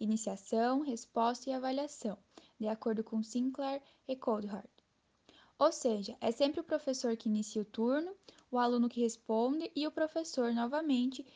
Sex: female